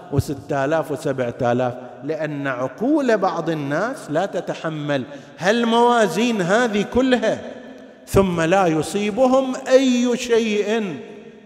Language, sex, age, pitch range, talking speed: Arabic, male, 50-69, 140-195 Hz, 100 wpm